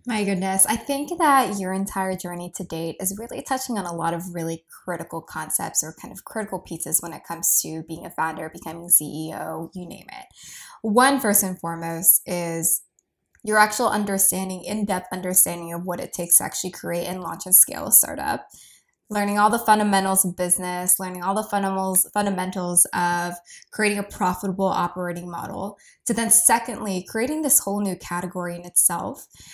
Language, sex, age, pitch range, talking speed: English, female, 20-39, 180-210 Hz, 175 wpm